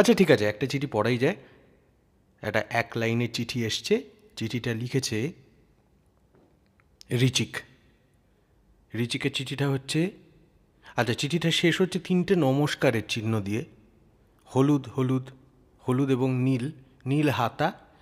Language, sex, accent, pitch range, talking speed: Bengali, male, native, 110-150 Hz, 110 wpm